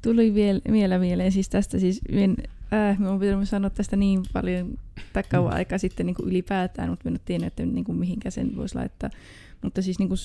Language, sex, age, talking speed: Finnish, female, 20-39, 200 wpm